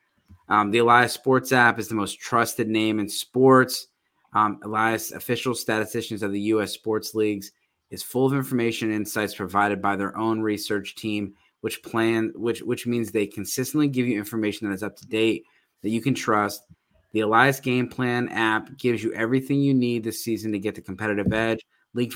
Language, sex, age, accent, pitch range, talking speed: English, male, 20-39, American, 105-120 Hz, 190 wpm